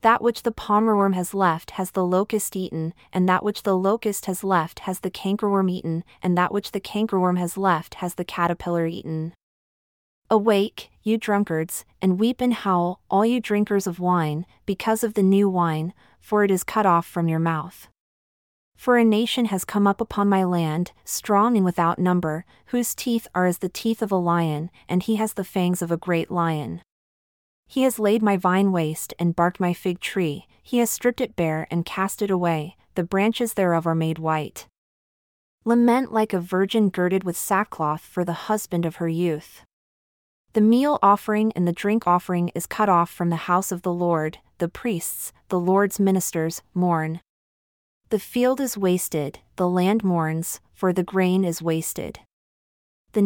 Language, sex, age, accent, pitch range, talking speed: English, female, 30-49, American, 170-205 Hz, 185 wpm